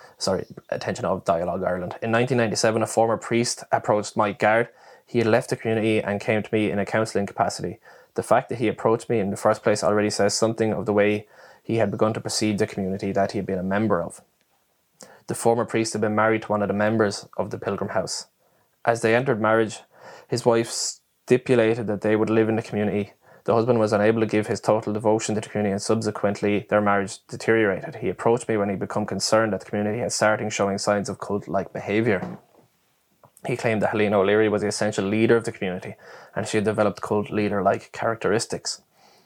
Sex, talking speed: male, 210 wpm